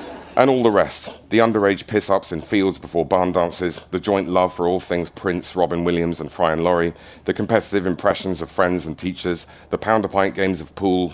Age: 40-59